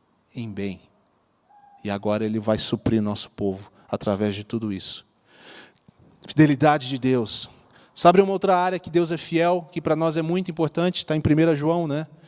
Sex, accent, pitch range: male, Brazilian, 145-175 Hz